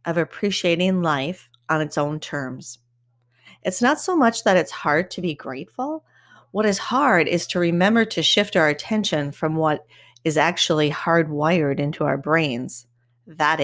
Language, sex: English, female